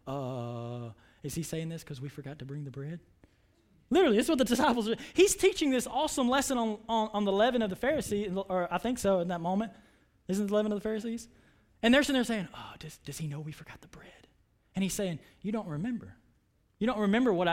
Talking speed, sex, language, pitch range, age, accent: 240 wpm, male, English, 195-285 Hz, 20-39, American